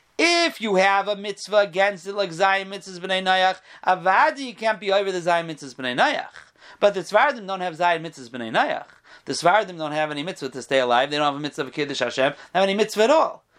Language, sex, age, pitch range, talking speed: English, male, 40-59, 145-235 Hz, 210 wpm